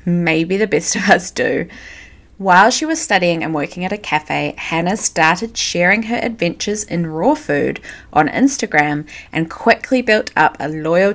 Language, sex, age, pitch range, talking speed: English, female, 20-39, 160-230 Hz, 165 wpm